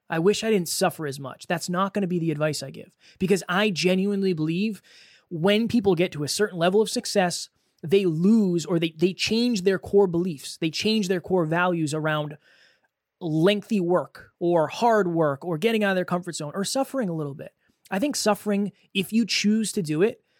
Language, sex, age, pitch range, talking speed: English, male, 20-39, 170-215 Hz, 205 wpm